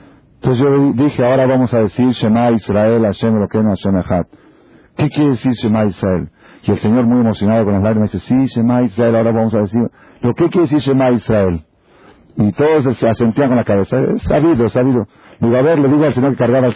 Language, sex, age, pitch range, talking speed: Spanish, male, 50-69, 115-150 Hz, 210 wpm